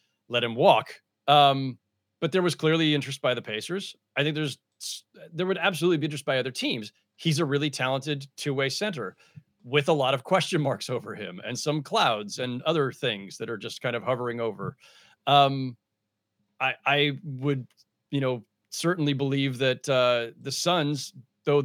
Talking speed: 175 wpm